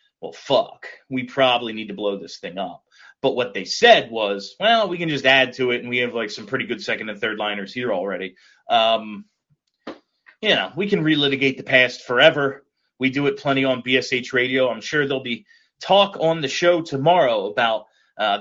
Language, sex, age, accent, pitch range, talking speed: English, male, 30-49, American, 125-170 Hz, 200 wpm